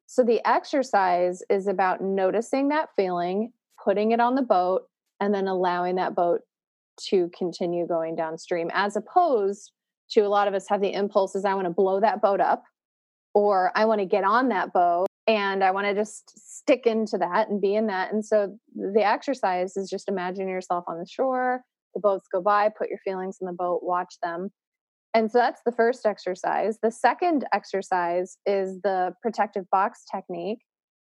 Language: English